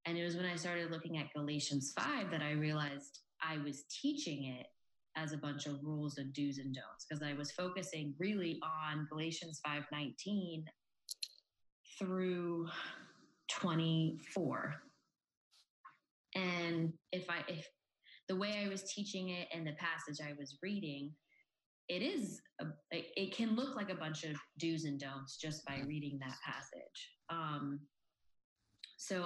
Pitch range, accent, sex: 150-180 Hz, American, female